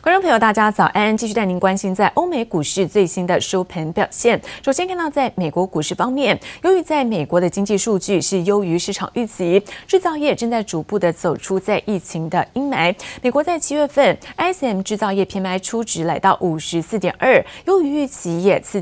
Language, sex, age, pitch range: Chinese, female, 20-39, 180-250 Hz